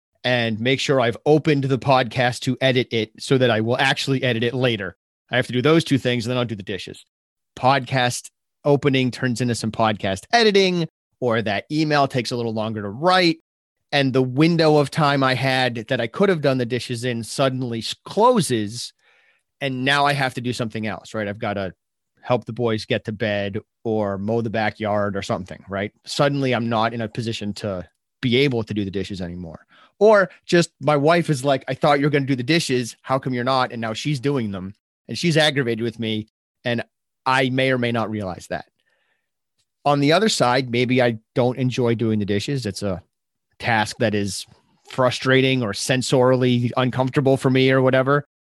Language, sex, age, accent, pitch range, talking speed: English, male, 30-49, American, 115-140 Hz, 200 wpm